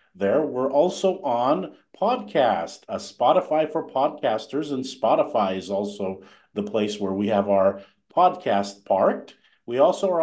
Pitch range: 105-150 Hz